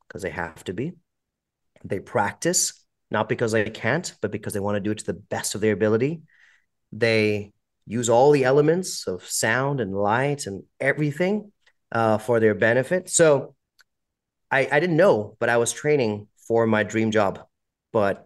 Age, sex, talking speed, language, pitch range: 30-49, male, 175 wpm, English, 105-120 Hz